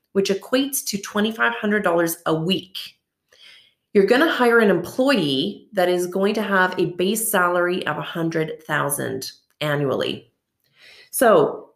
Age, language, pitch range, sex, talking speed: 30-49, English, 160-205 Hz, female, 135 wpm